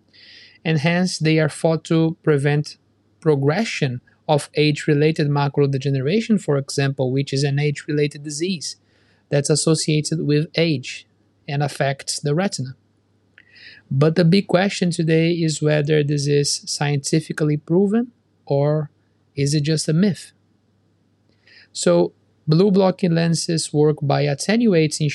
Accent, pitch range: Brazilian, 135-160 Hz